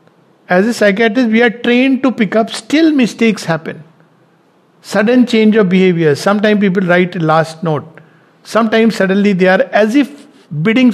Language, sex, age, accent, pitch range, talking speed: English, male, 50-69, Indian, 155-205 Hz, 160 wpm